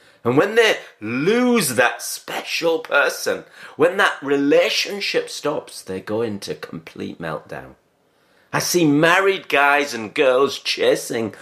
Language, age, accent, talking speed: English, 40-59, British, 120 wpm